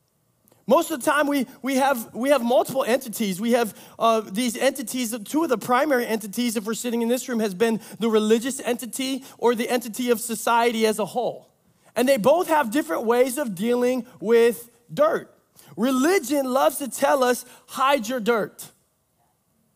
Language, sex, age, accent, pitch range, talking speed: English, male, 30-49, American, 235-305 Hz, 175 wpm